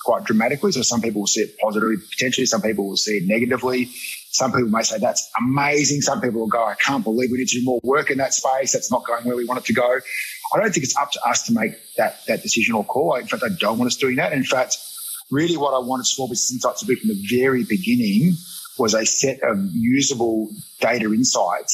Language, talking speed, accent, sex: English, 250 wpm, Australian, male